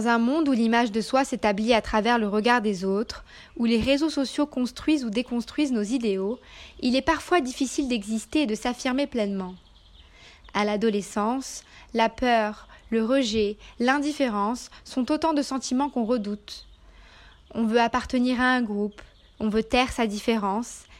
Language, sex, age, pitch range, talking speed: French, female, 20-39, 210-255 Hz, 160 wpm